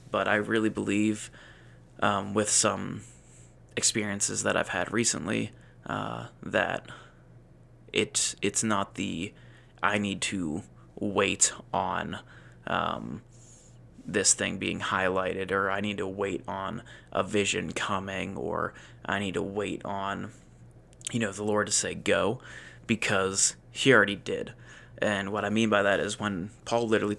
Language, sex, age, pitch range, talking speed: English, male, 20-39, 95-115 Hz, 140 wpm